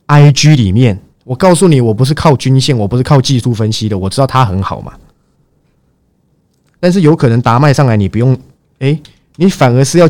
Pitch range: 100-145 Hz